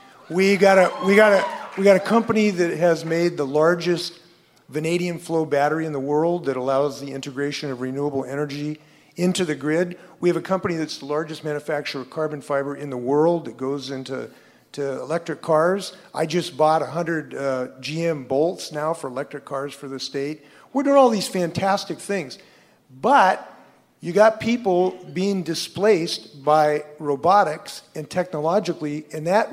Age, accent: 50-69, American